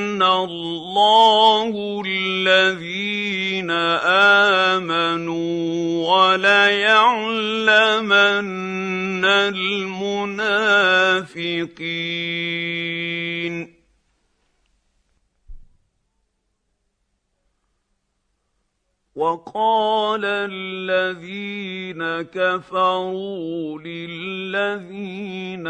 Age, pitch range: 50-69, 175-200 Hz